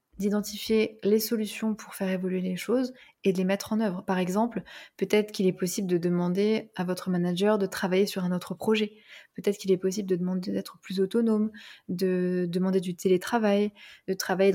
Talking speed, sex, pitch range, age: 190 wpm, female, 185-215 Hz, 20-39